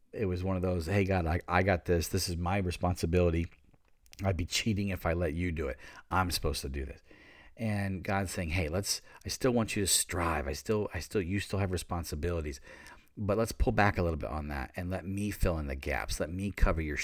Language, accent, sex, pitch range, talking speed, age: English, American, male, 80-95 Hz, 240 wpm, 40-59